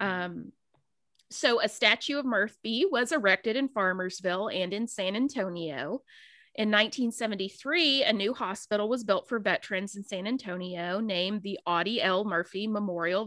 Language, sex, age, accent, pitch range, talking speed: English, female, 30-49, American, 185-230 Hz, 145 wpm